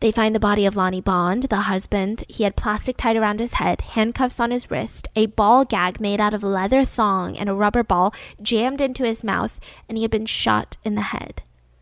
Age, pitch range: 10-29, 200-245 Hz